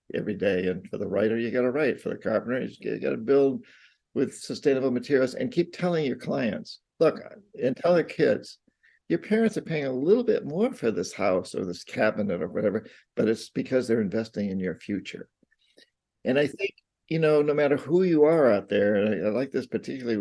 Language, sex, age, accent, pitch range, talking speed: English, male, 50-69, American, 120-175 Hz, 215 wpm